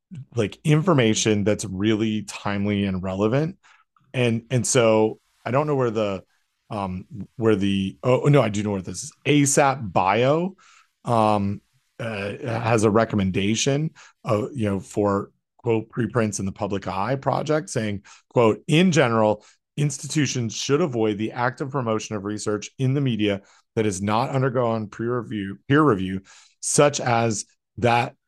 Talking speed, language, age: 150 wpm, English, 30-49